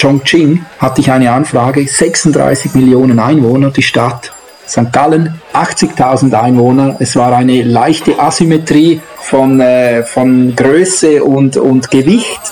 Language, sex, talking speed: German, male, 120 wpm